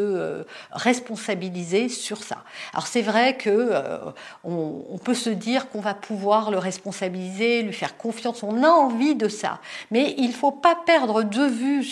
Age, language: 50-69, French